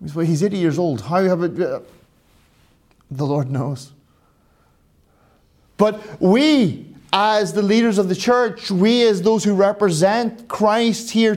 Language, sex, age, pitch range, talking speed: English, male, 30-49, 175-230 Hz, 135 wpm